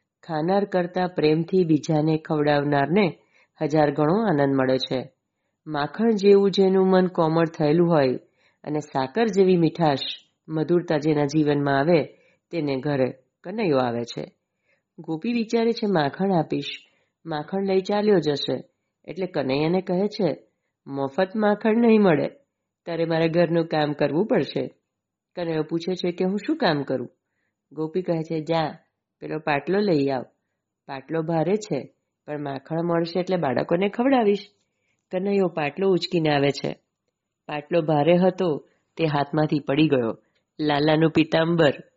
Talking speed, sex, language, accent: 135 wpm, female, Gujarati, native